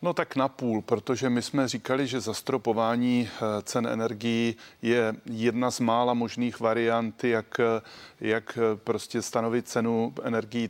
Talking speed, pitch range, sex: 130 wpm, 110-120 Hz, male